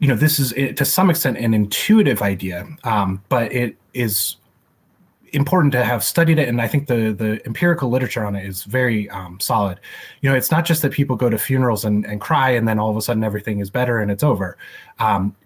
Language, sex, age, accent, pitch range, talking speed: English, male, 20-39, American, 105-130 Hz, 225 wpm